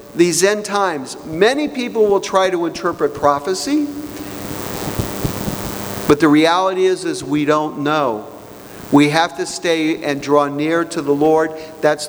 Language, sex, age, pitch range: English, male, 50-69, 150-190 Hz